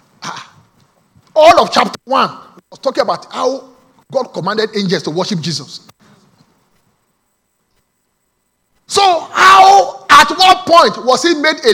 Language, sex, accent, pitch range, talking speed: English, male, Nigerian, 170-270 Hz, 120 wpm